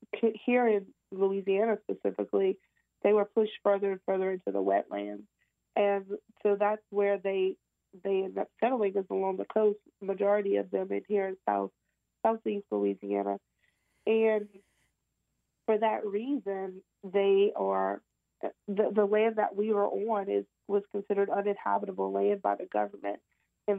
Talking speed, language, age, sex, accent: 145 wpm, English, 30-49, female, American